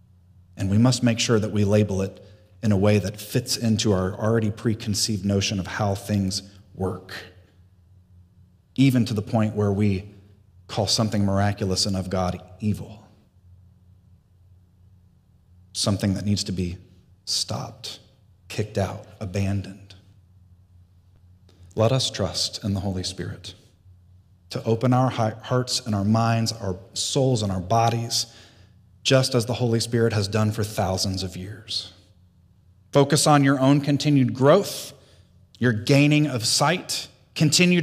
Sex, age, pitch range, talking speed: male, 40-59, 95-125 Hz, 135 wpm